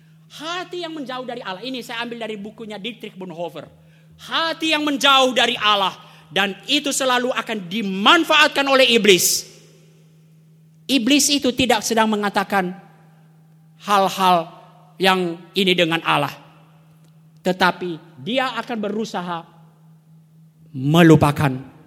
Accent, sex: native, male